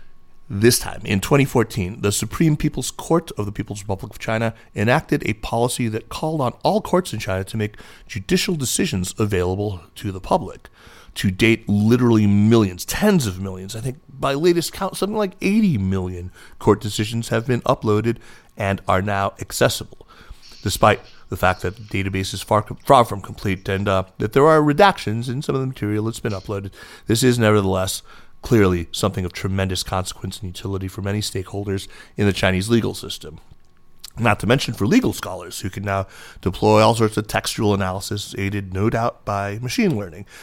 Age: 40-59